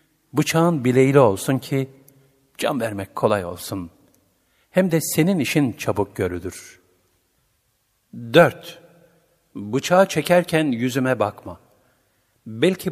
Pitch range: 105-140 Hz